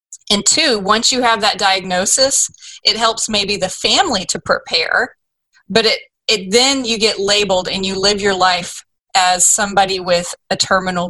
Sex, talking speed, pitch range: female, 170 wpm, 185-220 Hz